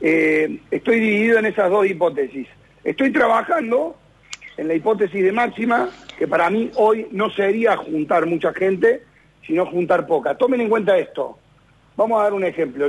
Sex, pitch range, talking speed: male, 165-220 Hz, 165 wpm